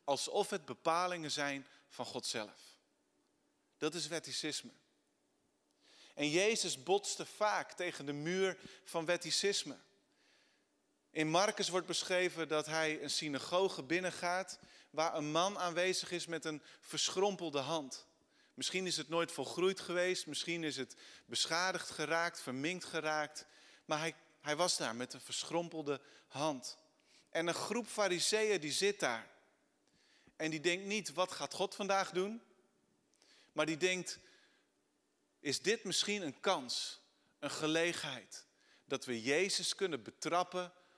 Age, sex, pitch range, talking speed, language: 40-59, male, 145-180 Hz, 130 wpm, Dutch